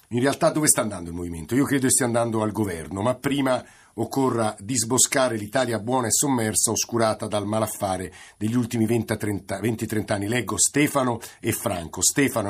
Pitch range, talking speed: 110-135 Hz, 165 wpm